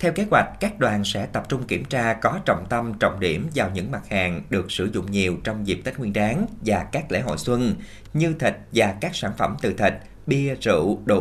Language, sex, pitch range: Vietnamese, male, 105-150 Hz